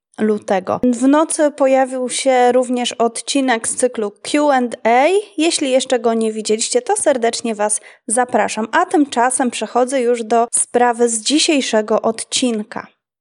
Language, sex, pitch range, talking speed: Polish, female, 230-285 Hz, 125 wpm